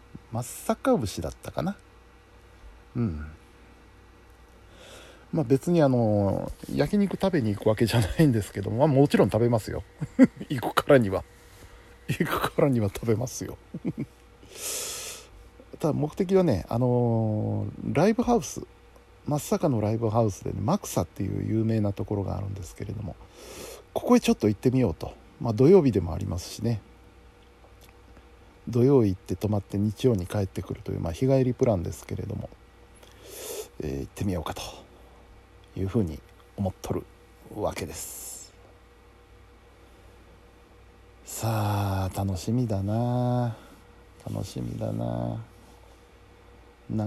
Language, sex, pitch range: Japanese, male, 95-130 Hz